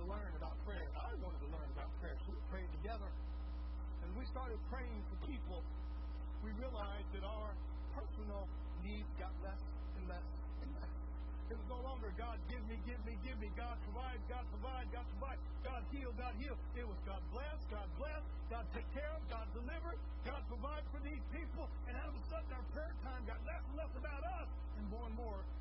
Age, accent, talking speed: 60-79, American, 210 wpm